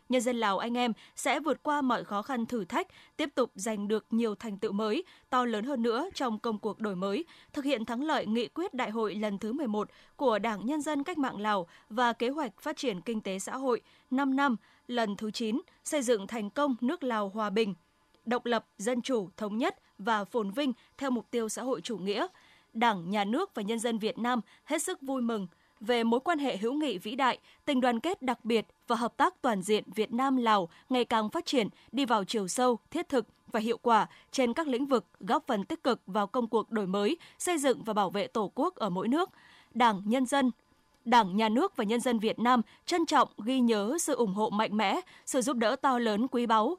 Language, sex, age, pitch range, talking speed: Vietnamese, female, 20-39, 215-265 Hz, 230 wpm